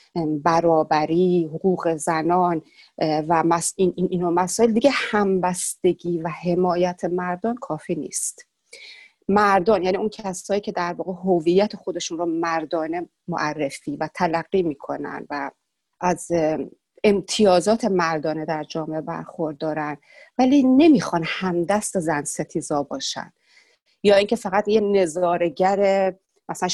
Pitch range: 160-200 Hz